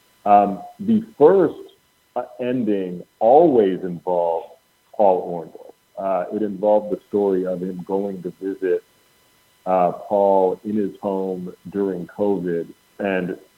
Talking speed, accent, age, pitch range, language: 115 wpm, American, 40-59, 90-110 Hz, English